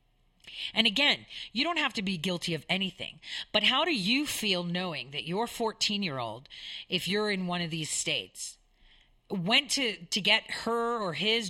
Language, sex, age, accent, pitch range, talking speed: English, female, 40-59, American, 165-210 Hz, 170 wpm